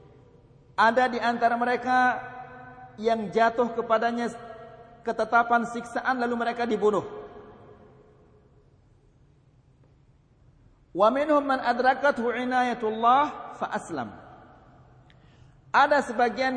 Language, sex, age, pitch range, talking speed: Malay, male, 50-69, 195-245 Hz, 70 wpm